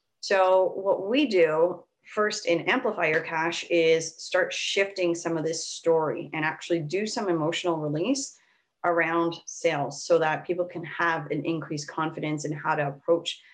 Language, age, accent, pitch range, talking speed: English, 30-49, American, 150-175 Hz, 160 wpm